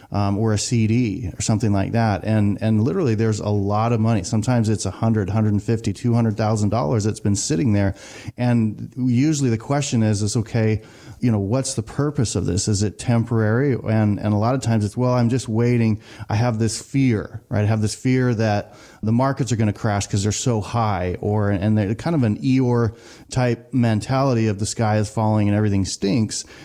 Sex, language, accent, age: male, English, American, 30-49